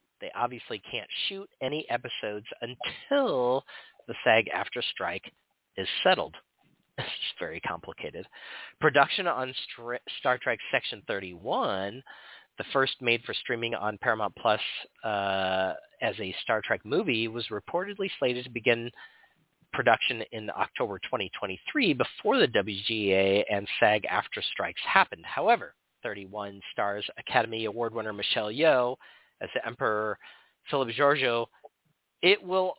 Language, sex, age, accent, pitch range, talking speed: English, male, 40-59, American, 115-145 Hz, 125 wpm